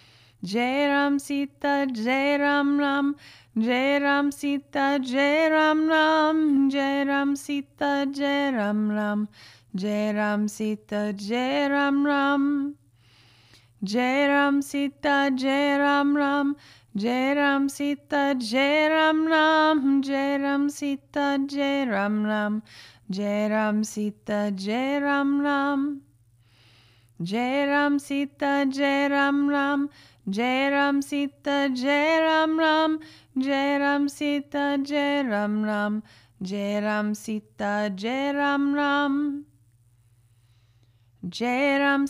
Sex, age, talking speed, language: female, 20-39, 55 wpm, English